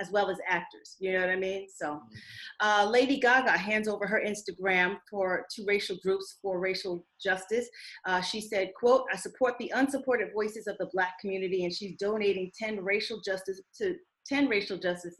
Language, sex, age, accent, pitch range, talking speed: English, female, 30-49, American, 175-205 Hz, 185 wpm